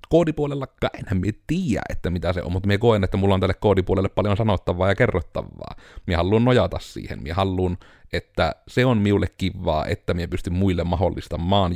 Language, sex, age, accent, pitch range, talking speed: Finnish, male, 30-49, native, 85-100 Hz, 185 wpm